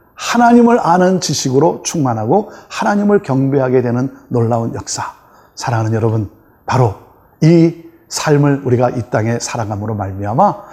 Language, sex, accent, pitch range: Korean, male, native, 120-170 Hz